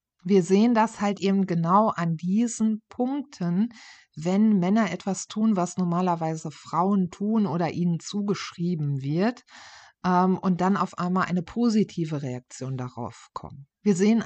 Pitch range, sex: 160-200 Hz, female